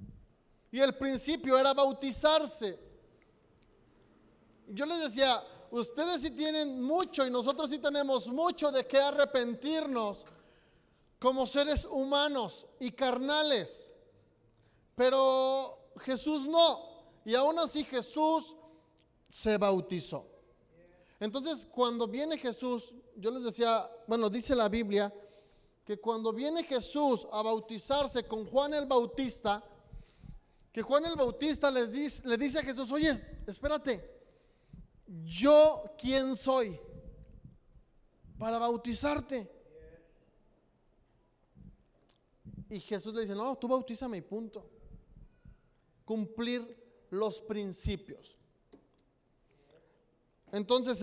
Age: 40-59